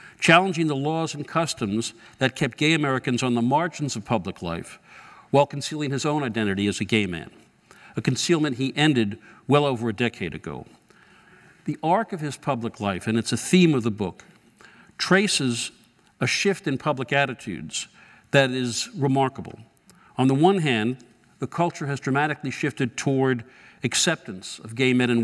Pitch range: 125-155 Hz